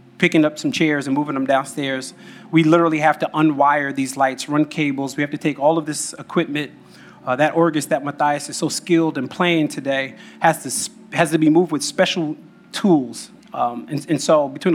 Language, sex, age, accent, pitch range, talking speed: English, male, 30-49, American, 150-175 Hz, 205 wpm